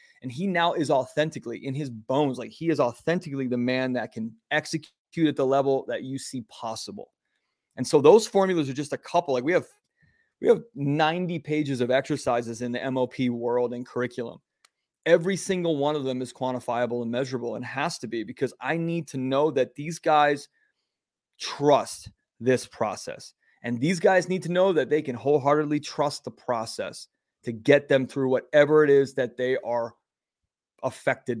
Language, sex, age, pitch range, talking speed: English, male, 30-49, 125-150 Hz, 180 wpm